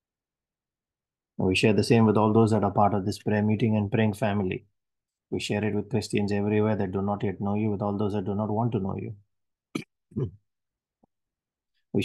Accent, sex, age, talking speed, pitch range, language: Indian, male, 30-49, 200 wpm, 100-115 Hz, English